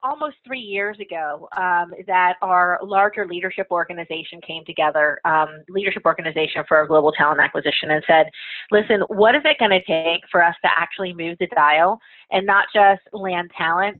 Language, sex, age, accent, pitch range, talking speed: English, female, 30-49, American, 165-200 Hz, 170 wpm